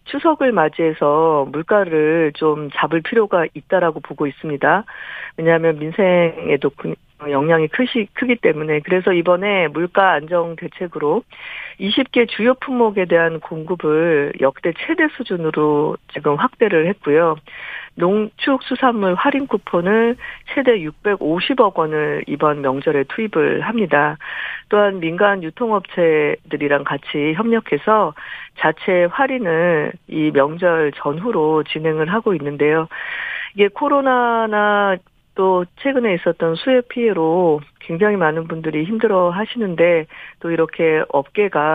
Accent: native